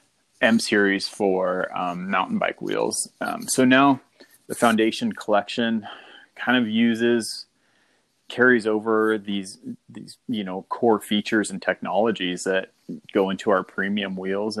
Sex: male